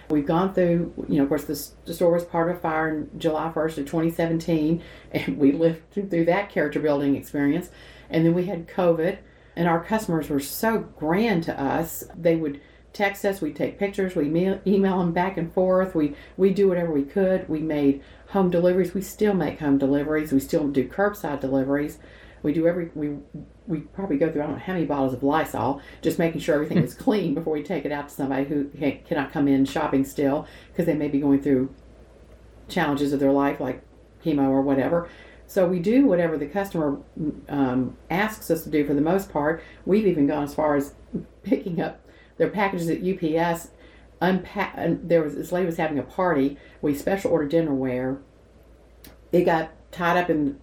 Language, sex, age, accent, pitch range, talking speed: English, female, 50-69, American, 145-175 Hz, 195 wpm